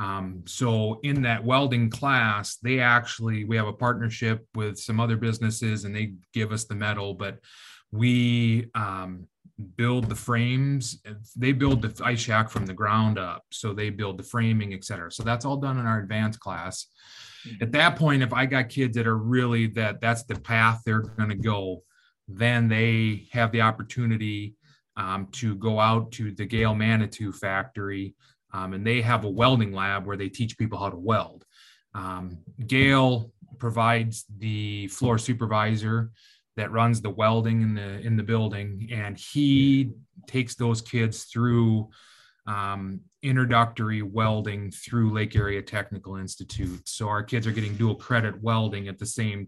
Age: 30-49